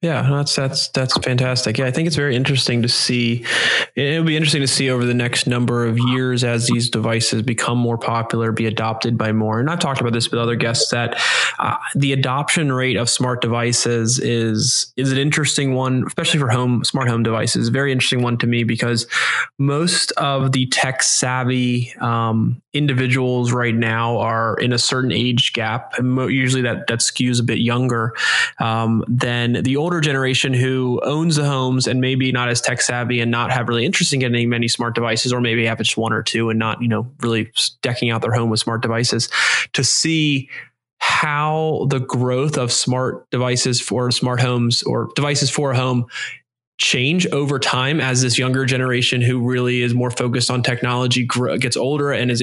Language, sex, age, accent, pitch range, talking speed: English, male, 20-39, American, 120-135 Hz, 195 wpm